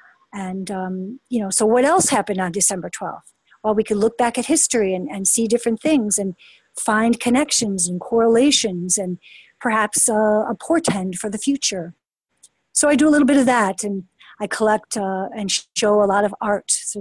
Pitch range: 190-235 Hz